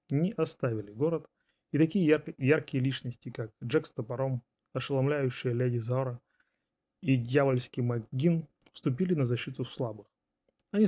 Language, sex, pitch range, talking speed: Russian, male, 125-150 Hz, 125 wpm